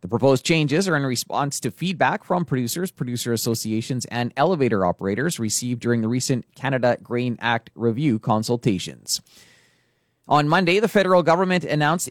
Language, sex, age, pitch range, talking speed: English, male, 30-49, 120-160 Hz, 150 wpm